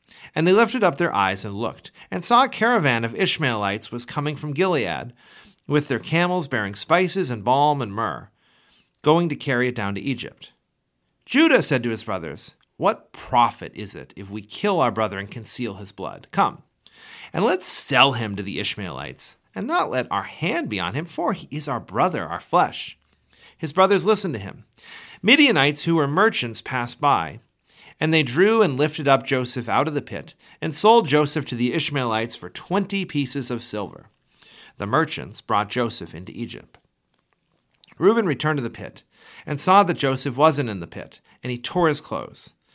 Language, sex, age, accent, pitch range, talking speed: English, male, 40-59, American, 115-175 Hz, 185 wpm